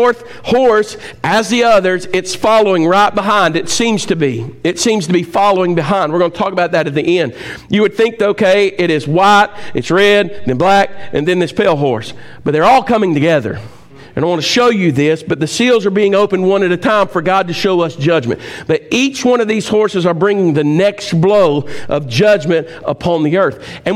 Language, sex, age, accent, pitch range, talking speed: English, male, 50-69, American, 170-220 Hz, 225 wpm